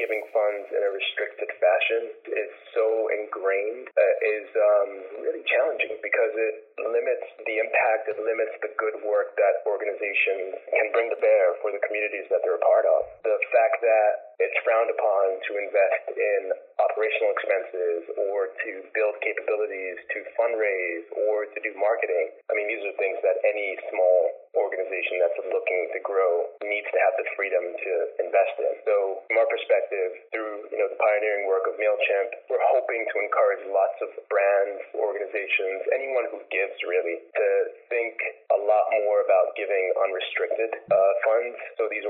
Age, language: 30-49, English